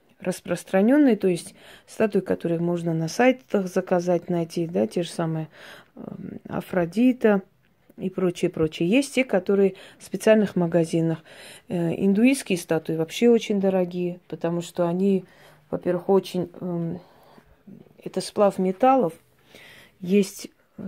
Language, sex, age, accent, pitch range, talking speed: Russian, female, 30-49, native, 175-200 Hz, 110 wpm